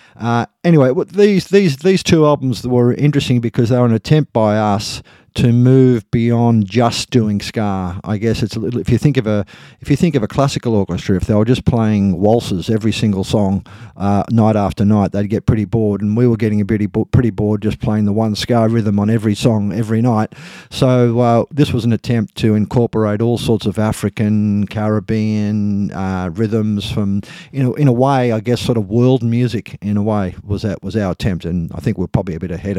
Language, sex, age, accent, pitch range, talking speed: English, male, 50-69, Australian, 100-120 Hz, 210 wpm